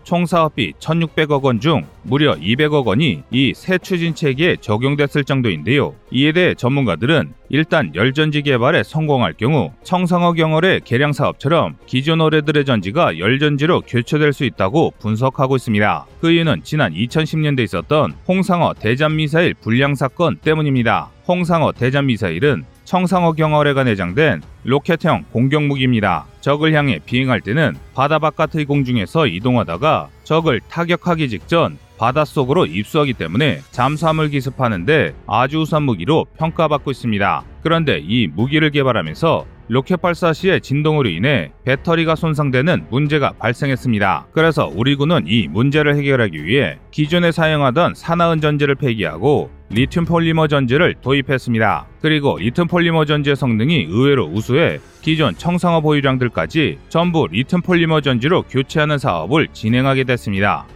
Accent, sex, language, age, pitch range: native, male, Korean, 30-49, 125-160 Hz